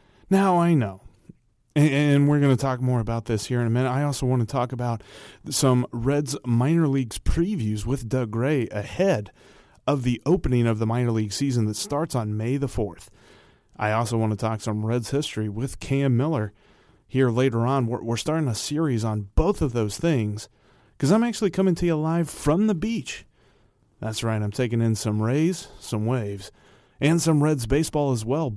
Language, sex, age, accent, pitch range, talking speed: English, male, 30-49, American, 110-150 Hz, 195 wpm